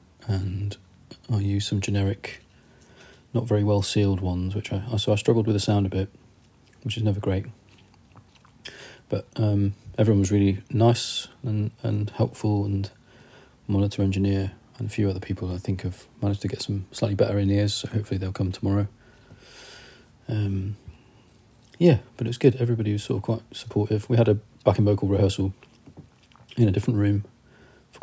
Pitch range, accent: 100-115 Hz, British